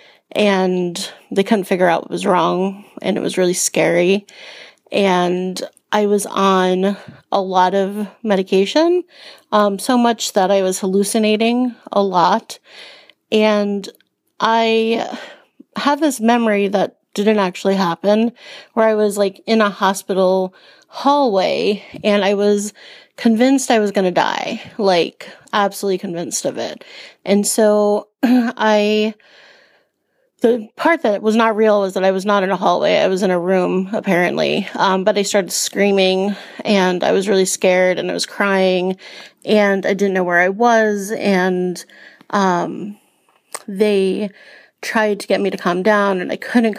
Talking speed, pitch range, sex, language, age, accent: 150 wpm, 190-215 Hz, female, English, 30-49, American